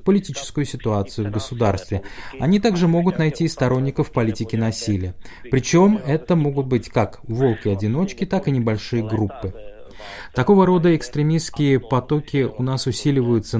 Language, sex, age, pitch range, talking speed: Russian, male, 20-39, 115-150 Hz, 130 wpm